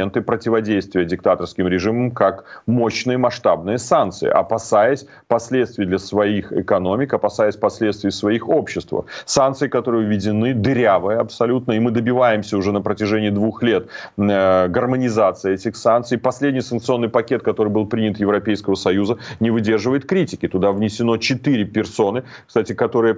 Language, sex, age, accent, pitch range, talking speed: Ukrainian, male, 30-49, native, 105-130 Hz, 125 wpm